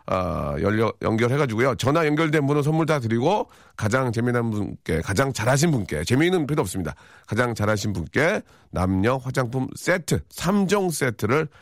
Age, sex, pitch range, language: 40-59, male, 95-150 Hz, Korean